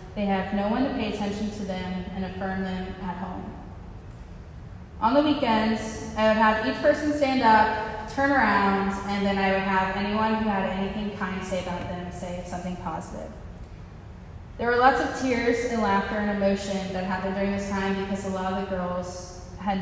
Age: 20-39